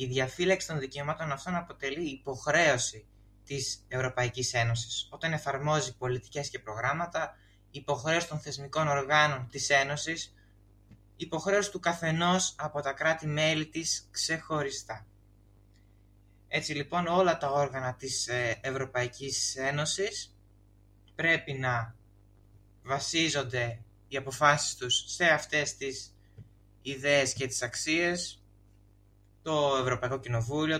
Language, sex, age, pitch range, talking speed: Greek, male, 20-39, 105-155 Hz, 105 wpm